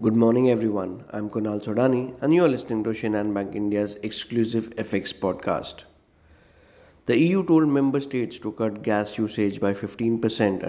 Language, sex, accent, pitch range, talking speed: English, male, Indian, 100-115 Hz, 165 wpm